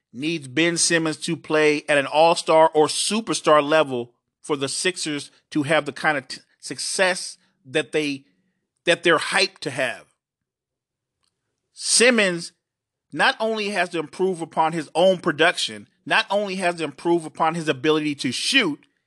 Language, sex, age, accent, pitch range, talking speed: English, male, 40-59, American, 140-170 Hz, 150 wpm